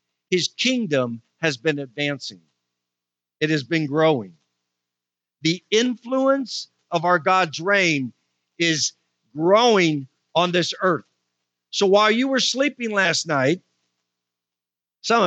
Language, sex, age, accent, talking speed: English, male, 50-69, American, 110 wpm